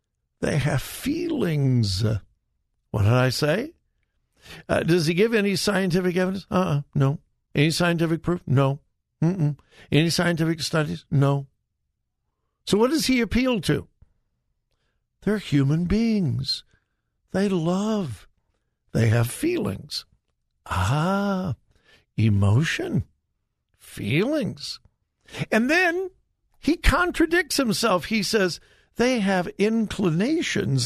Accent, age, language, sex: American, 60-79, English, male